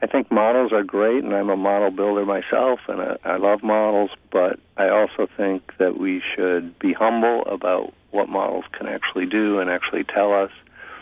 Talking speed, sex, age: 185 wpm, male, 50-69